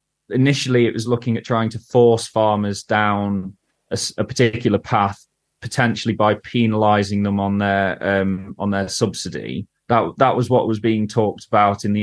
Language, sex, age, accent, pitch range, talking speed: English, male, 20-39, British, 100-110 Hz, 170 wpm